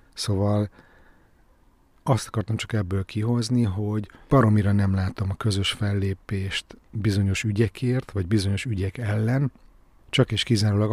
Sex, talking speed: male, 120 wpm